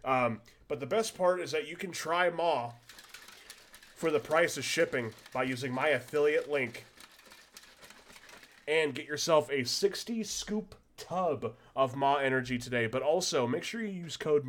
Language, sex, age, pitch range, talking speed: English, male, 20-39, 110-140 Hz, 160 wpm